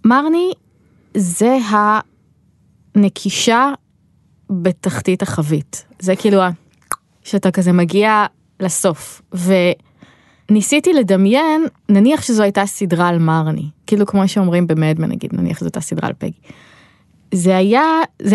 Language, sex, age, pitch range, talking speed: Hebrew, female, 20-39, 180-235 Hz, 105 wpm